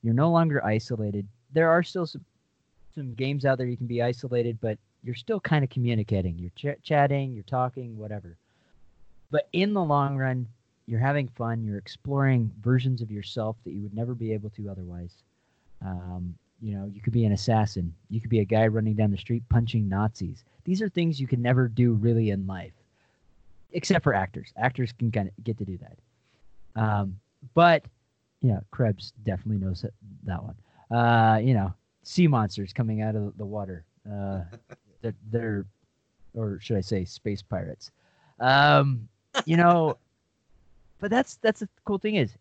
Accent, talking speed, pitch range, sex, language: American, 180 wpm, 105-130 Hz, male, English